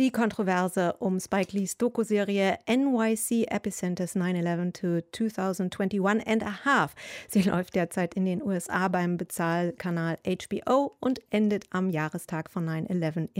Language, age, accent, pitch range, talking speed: German, 30-49, German, 170-210 Hz, 125 wpm